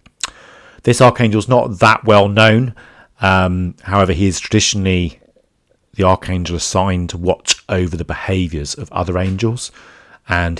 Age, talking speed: 40-59, 135 wpm